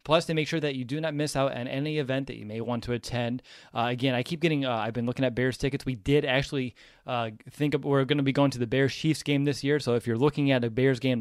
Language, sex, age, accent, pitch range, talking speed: English, male, 30-49, American, 120-145 Hz, 305 wpm